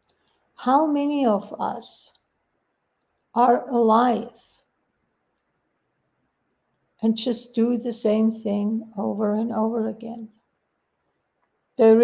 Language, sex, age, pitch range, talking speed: English, female, 60-79, 220-245 Hz, 85 wpm